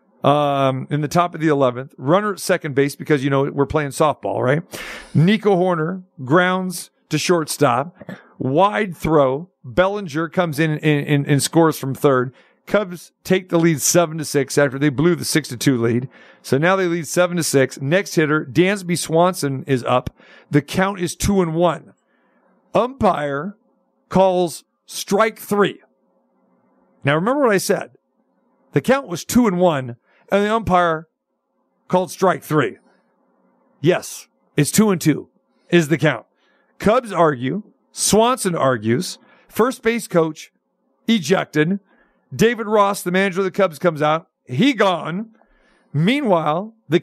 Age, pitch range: 50-69, 150-200 Hz